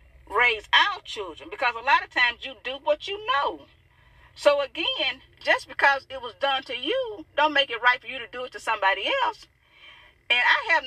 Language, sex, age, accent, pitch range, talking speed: English, female, 40-59, American, 220-305 Hz, 205 wpm